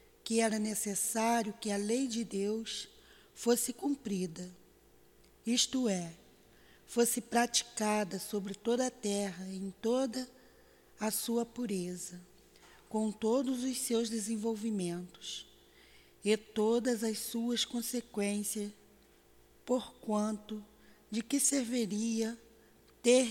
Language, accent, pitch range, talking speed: Portuguese, Brazilian, 205-245 Hz, 100 wpm